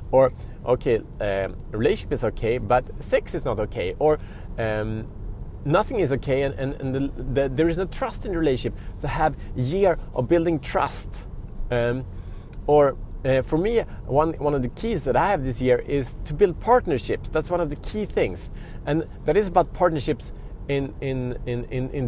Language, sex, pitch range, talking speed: Swedish, male, 105-145 Hz, 185 wpm